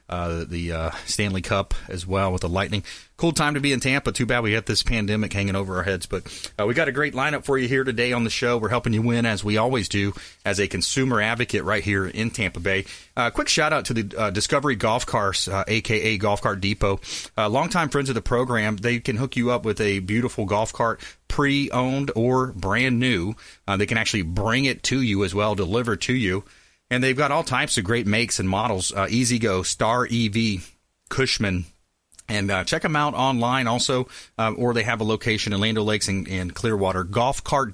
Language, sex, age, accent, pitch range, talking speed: English, male, 30-49, American, 100-130 Hz, 225 wpm